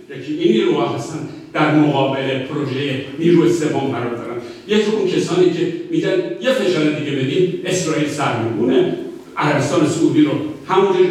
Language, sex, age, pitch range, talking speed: Persian, male, 60-79, 130-185 Hz, 145 wpm